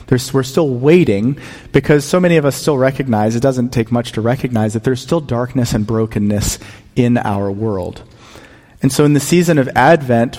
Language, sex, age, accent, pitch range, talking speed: English, male, 40-59, American, 110-145 Hz, 185 wpm